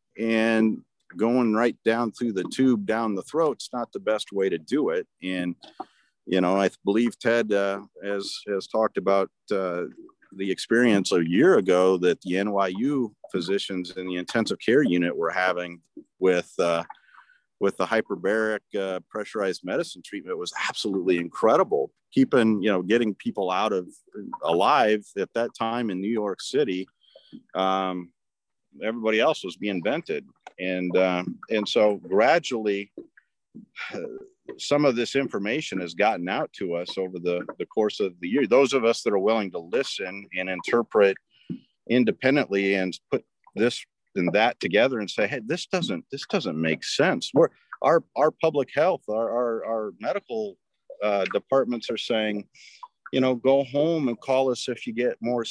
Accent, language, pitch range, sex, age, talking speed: American, English, 95-120 Hz, male, 40-59, 160 wpm